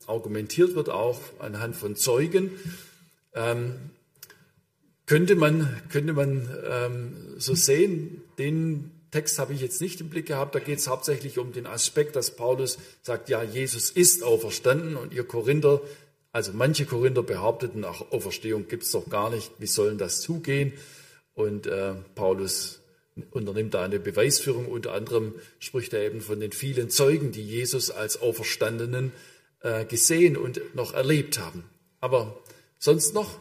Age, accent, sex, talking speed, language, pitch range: 50-69, German, male, 145 wpm, German, 115-160 Hz